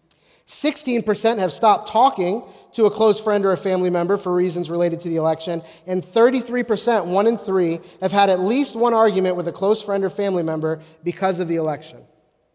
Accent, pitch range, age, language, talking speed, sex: American, 175-220 Hz, 30-49, English, 185 wpm, male